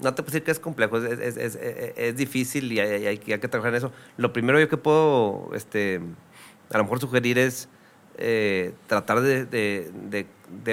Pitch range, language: 105-125 Hz, Spanish